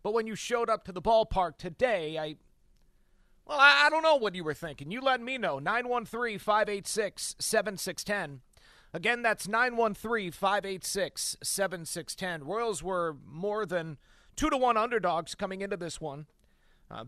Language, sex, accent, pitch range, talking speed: English, male, American, 175-215 Hz, 140 wpm